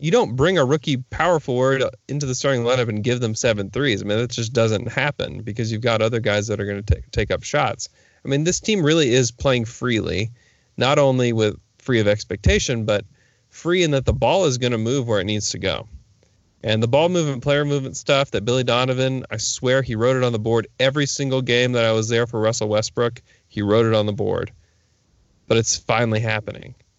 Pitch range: 110-135 Hz